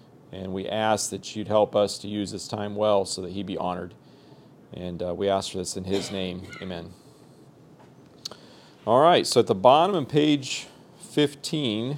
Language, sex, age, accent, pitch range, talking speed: English, male, 40-59, American, 110-140 Hz, 180 wpm